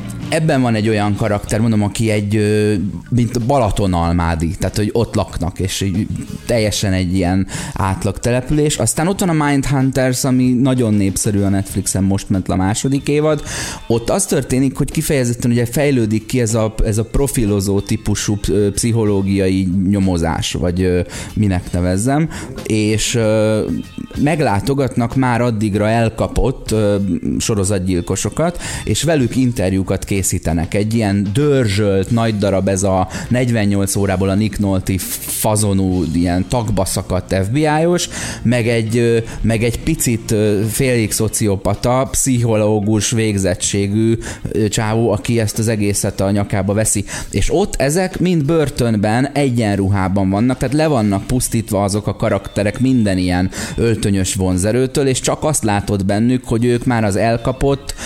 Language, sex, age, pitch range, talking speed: Hungarian, male, 30-49, 100-125 Hz, 125 wpm